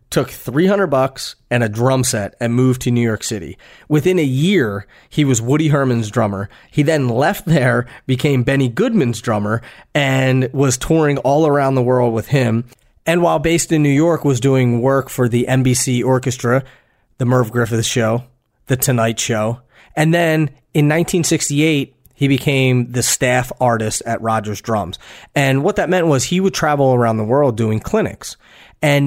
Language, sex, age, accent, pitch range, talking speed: English, male, 30-49, American, 115-145 Hz, 175 wpm